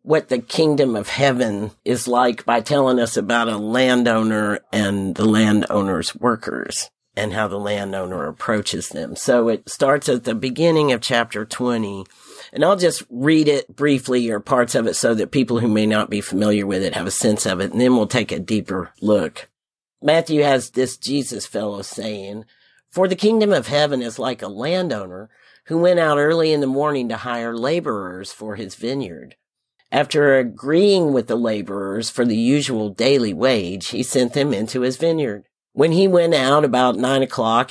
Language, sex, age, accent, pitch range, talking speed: English, male, 50-69, American, 110-140 Hz, 185 wpm